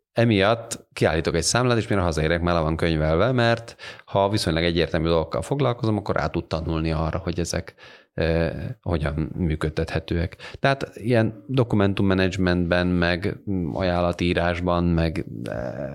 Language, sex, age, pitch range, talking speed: Hungarian, male, 30-49, 85-100 Hz, 115 wpm